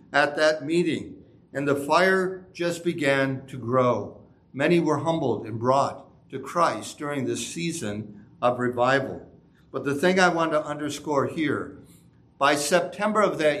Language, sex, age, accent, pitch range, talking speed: English, male, 60-79, American, 130-175 Hz, 150 wpm